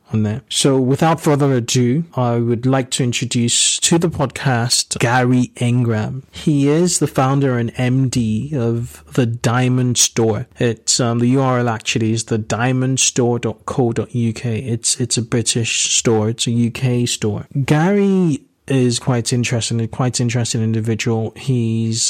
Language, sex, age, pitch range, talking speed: English, male, 30-49, 115-130 Hz, 135 wpm